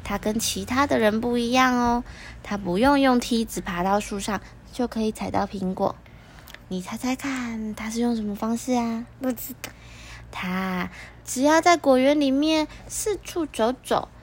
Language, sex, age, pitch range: Chinese, female, 20-39, 215-285 Hz